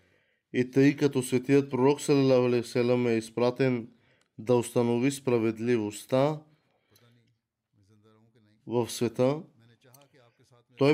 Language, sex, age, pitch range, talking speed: Bulgarian, male, 20-39, 120-140 Hz, 70 wpm